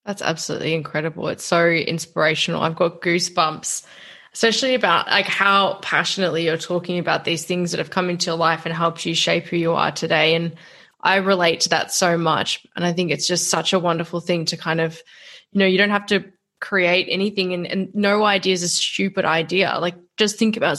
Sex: female